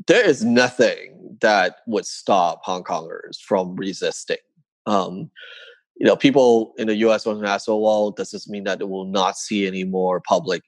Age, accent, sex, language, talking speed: 30-49, American, male, English, 180 wpm